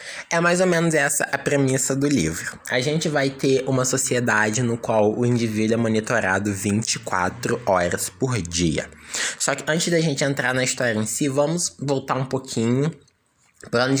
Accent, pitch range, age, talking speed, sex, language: Brazilian, 110-145 Hz, 20-39, 180 wpm, male, Portuguese